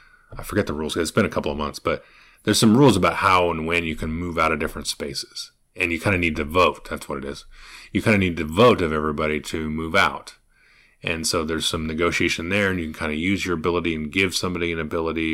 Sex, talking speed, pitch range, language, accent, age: male, 260 wpm, 80-95 Hz, English, American, 30-49